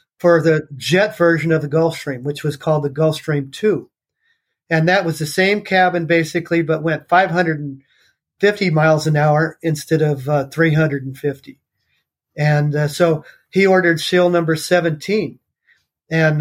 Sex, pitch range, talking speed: male, 155-180 Hz, 145 wpm